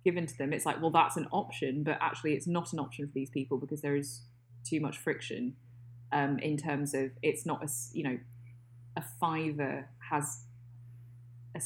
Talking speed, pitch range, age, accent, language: 190 wpm, 120-160 Hz, 20-39, British, English